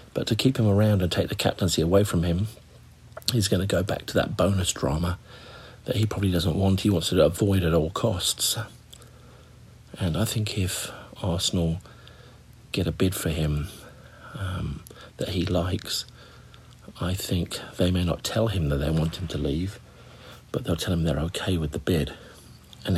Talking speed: 185 wpm